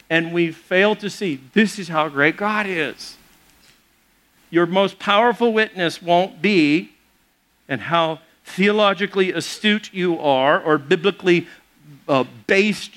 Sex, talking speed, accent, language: male, 120 wpm, American, English